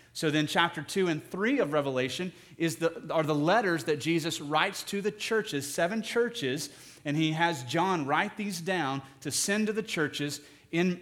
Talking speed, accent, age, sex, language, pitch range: 185 wpm, American, 30-49, male, English, 150-175 Hz